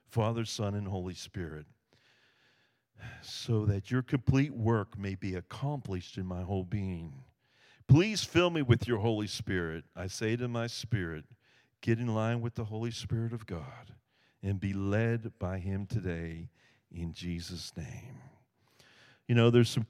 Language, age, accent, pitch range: English, 50-69, American, 105-135 Hz